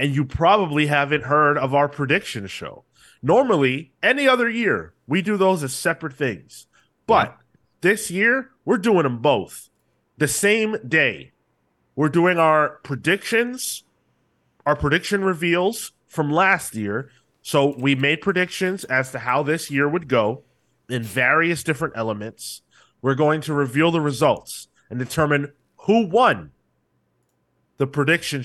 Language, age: English, 30-49